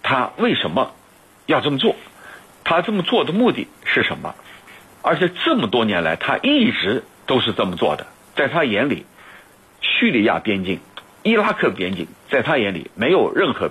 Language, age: Chinese, 60-79